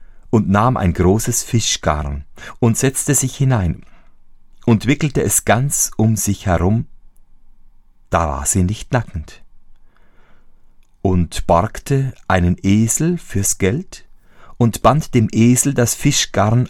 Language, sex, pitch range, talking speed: German, male, 90-120 Hz, 120 wpm